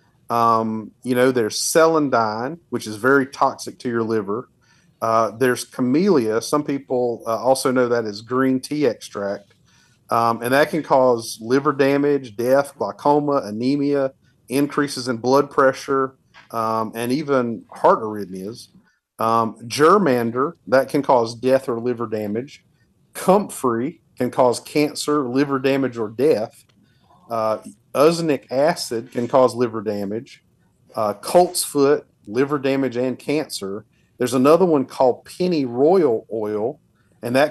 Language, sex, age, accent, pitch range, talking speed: English, male, 40-59, American, 115-140 Hz, 135 wpm